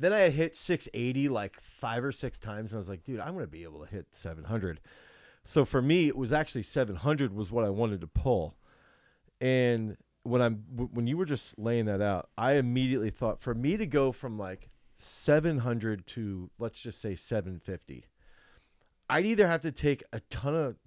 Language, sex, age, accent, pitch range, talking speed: English, male, 40-59, American, 110-140 Hz, 195 wpm